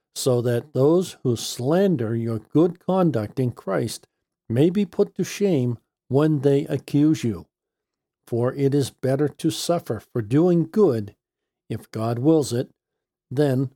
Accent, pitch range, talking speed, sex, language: American, 120-175 Hz, 145 wpm, male, English